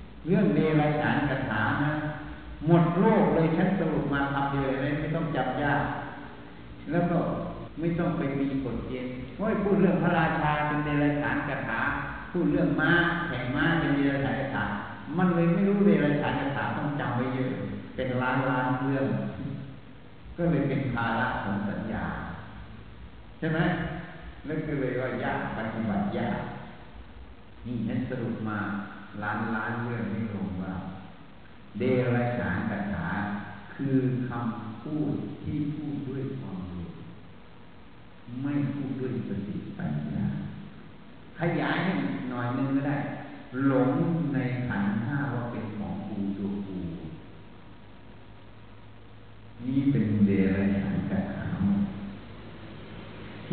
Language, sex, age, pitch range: Thai, male, 60-79, 110-150 Hz